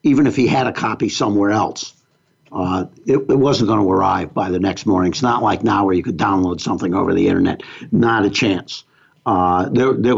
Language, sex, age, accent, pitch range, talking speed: English, male, 60-79, American, 105-135 Hz, 220 wpm